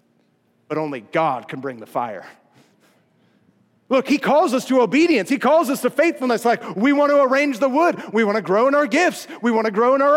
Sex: male